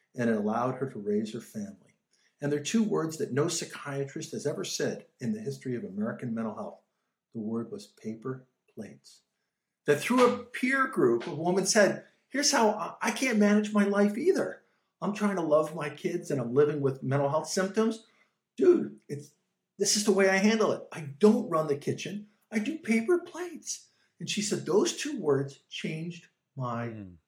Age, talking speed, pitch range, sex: 50-69, 190 wpm, 135-205 Hz, male